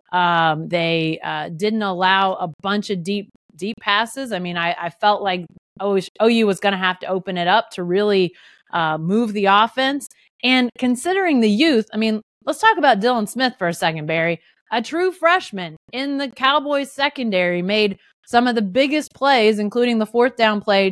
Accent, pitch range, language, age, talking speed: American, 185-245 Hz, English, 30-49, 185 wpm